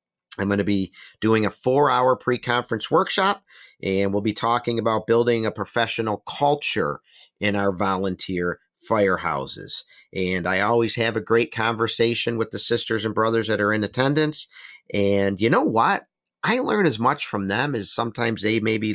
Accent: American